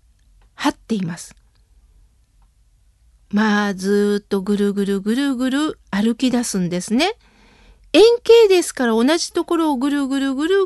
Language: Japanese